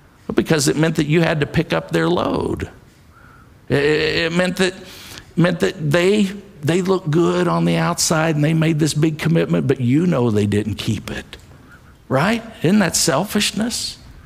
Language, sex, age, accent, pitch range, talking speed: English, male, 50-69, American, 130-175 Hz, 175 wpm